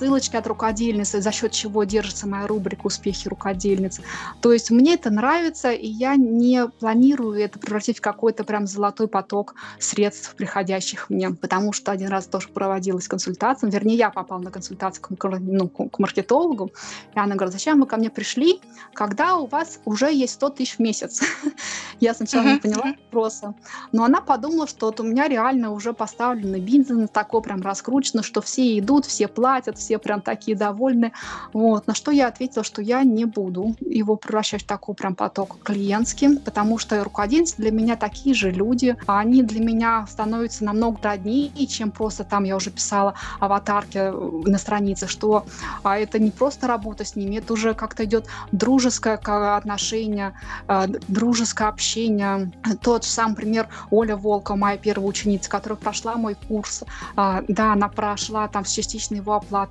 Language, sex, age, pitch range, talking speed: Russian, female, 20-39, 205-235 Hz, 165 wpm